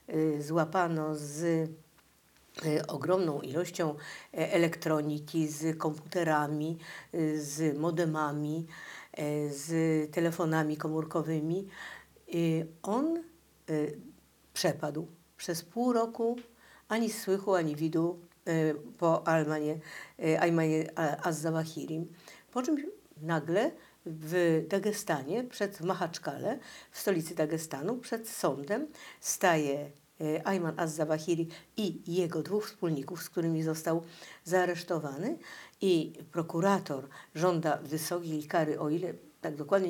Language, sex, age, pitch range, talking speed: Polish, female, 50-69, 155-185 Hz, 95 wpm